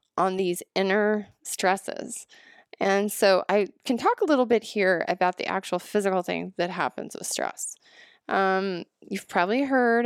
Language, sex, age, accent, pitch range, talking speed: English, female, 20-39, American, 175-225 Hz, 155 wpm